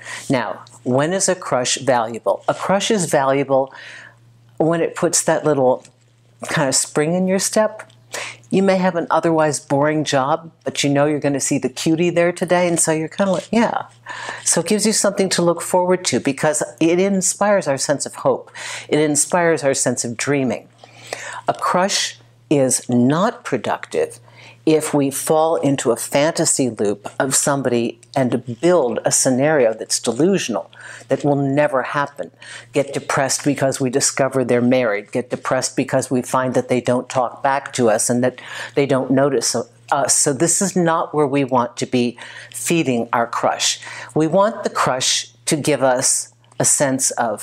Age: 50-69